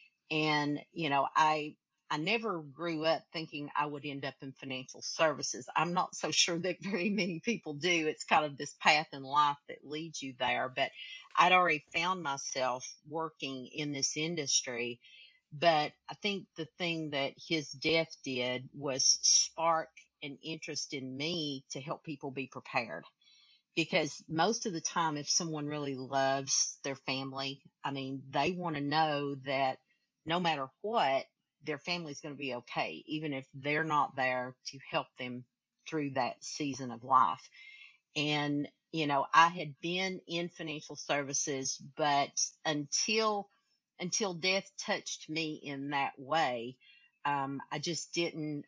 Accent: American